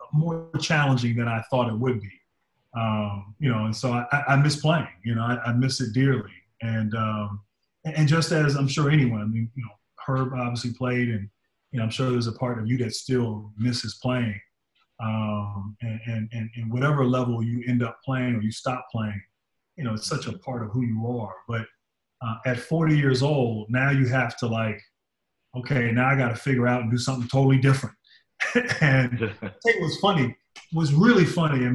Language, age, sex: English, 30-49, male